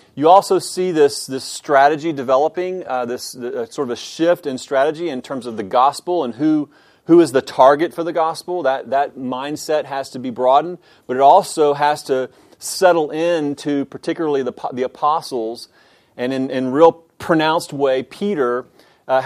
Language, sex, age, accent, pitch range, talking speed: English, male, 30-49, American, 130-165 Hz, 180 wpm